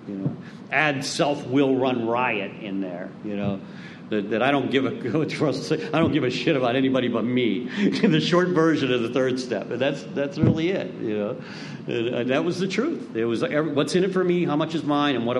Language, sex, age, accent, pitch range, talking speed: English, male, 50-69, American, 130-190 Hz, 240 wpm